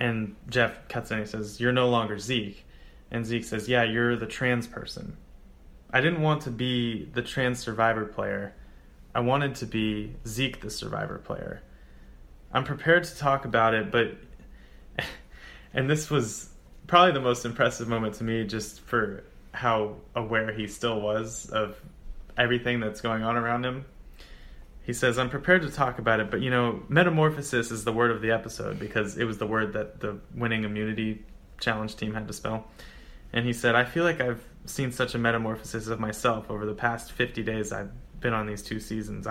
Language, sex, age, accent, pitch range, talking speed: English, male, 20-39, American, 105-125 Hz, 185 wpm